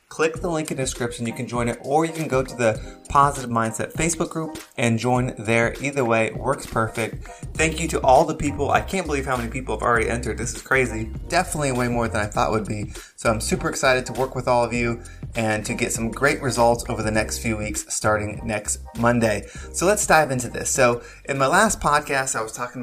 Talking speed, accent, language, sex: 240 wpm, American, English, male